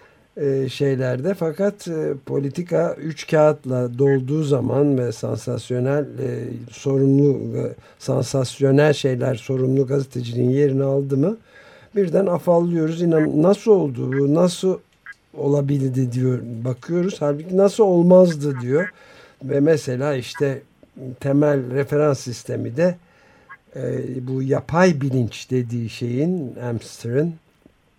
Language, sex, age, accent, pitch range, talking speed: Turkish, male, 60-79, native, 125-155 Hz, 100 wpm